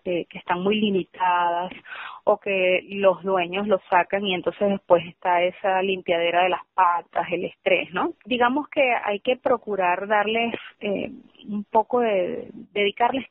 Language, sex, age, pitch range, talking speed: Spanish, female, 30-49, 185-240 Hz, 150 wpm